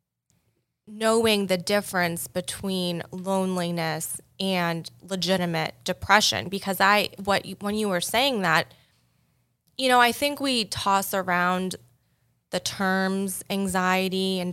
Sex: female